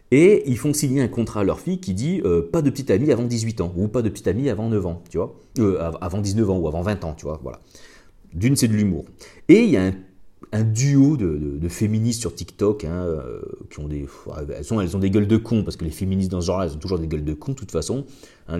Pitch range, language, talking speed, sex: 95-135 Hz, French, 285 wpm, male